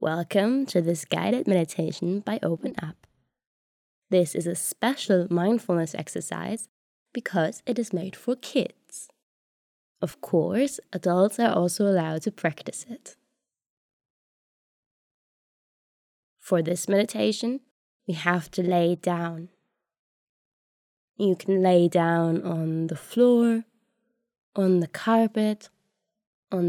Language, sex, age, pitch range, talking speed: Dutch, female, 20-39, 165-215 Hz, 110 wpm